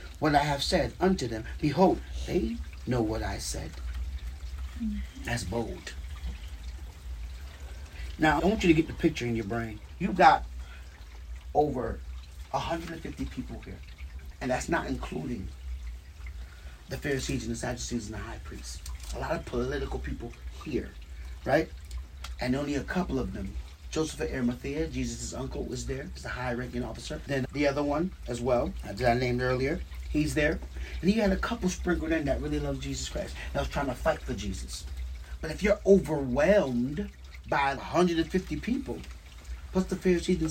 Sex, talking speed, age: male, 165 wpm, 30-49